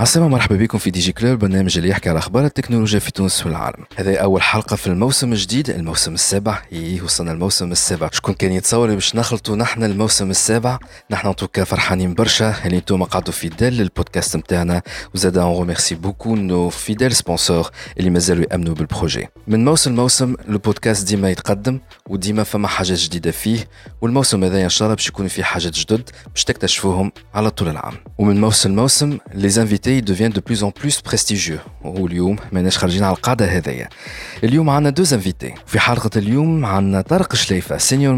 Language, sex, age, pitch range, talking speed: Arabic, male, 40-59, 90-115 Hz, 165 wpm